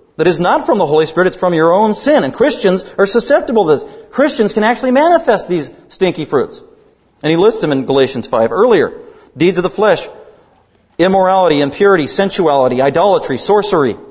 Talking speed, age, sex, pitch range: 180 wpm, 40-59, male, 130-225 Hz